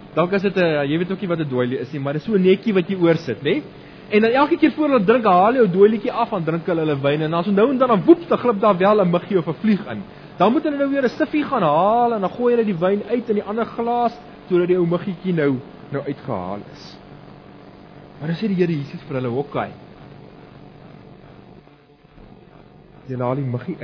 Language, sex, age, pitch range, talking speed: English, male, 30-49, 145-210 Hz, 240 wpm